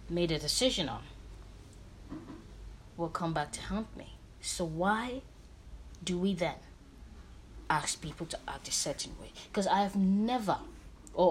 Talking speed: 145 wpm